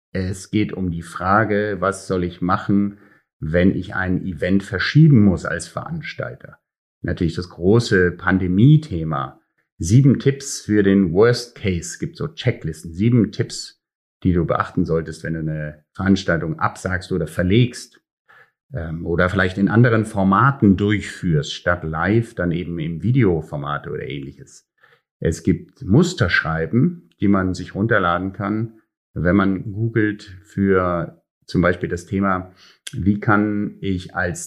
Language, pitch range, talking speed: German, 95-120 Hz, 135 wpm